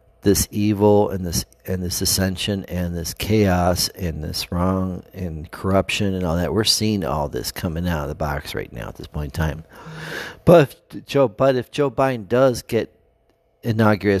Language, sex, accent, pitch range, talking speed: English, male, American, 90-115 Hz, 180 wpm